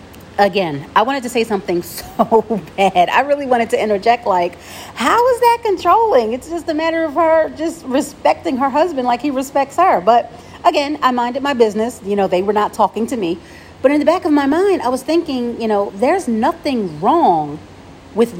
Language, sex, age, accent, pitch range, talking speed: English, female, 40-59, American, 195-275 Hz, 200 wpm